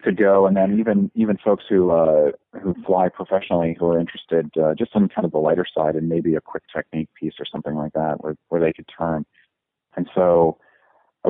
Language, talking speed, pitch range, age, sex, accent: English, 220 wpm, 80-95 Hz, 40-59, male, American